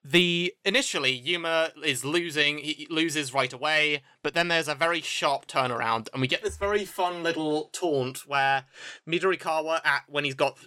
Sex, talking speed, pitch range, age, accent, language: male, 170 wpm, 135-170 Hz, 30-49, British, English